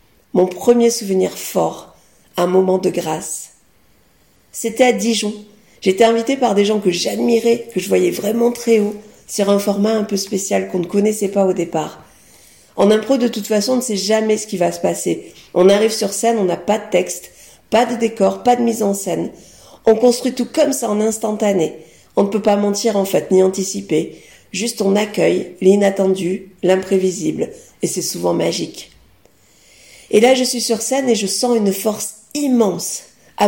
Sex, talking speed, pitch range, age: female, 190 wpm, 190-235 Hz, 50-69